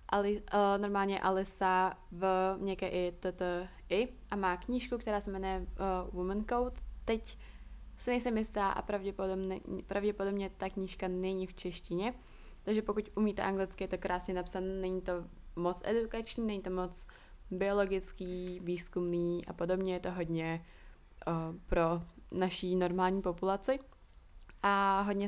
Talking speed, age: 130 wpm, 20-39